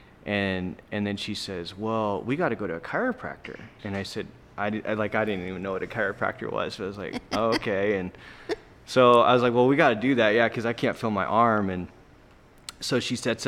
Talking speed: 240 wpm